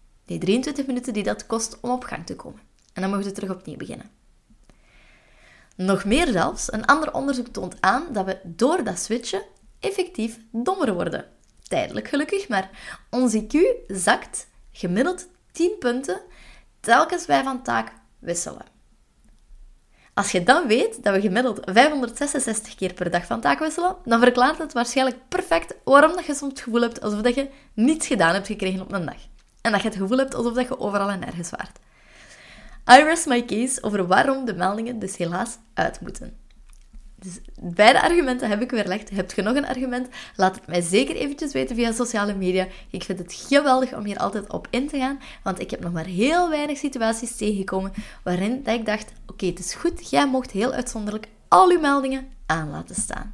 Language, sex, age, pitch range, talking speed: Dutch, female, 20-39, 195-265 Hz, 185 wpm